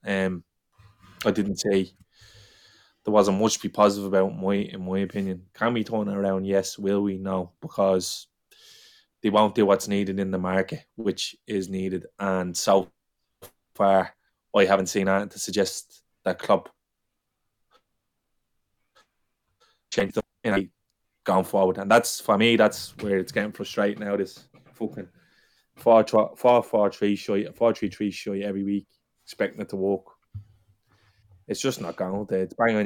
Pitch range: 95-105 Hz